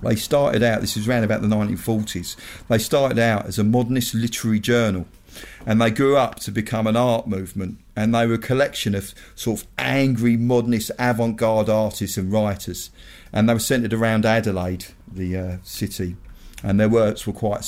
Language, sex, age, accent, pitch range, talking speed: English, male, 40-59, British, 95-115 Hz, 185 wpm